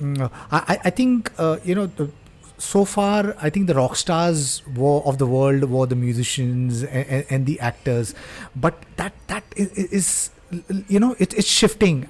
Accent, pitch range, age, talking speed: Indian, 140-180 Hz, 30-49, 165 wpm